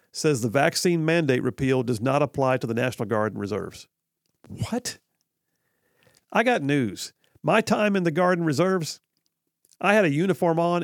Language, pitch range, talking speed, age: English, 135-180 Hz, 165 wpm, 50-69